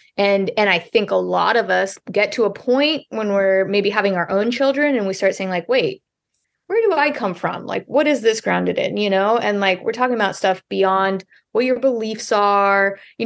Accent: American